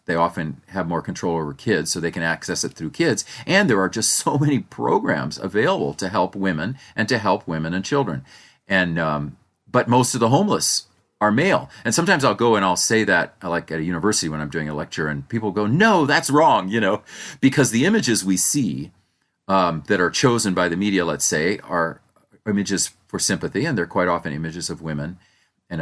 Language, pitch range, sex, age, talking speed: English, 80-115 Hz, male, 40-59, 210 wpm